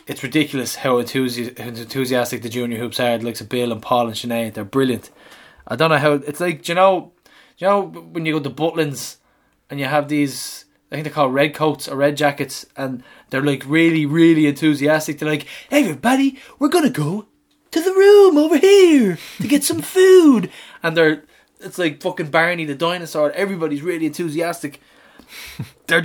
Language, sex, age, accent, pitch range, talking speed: English, male, 20-39, Irish, 130-170 Hz, 185 wpm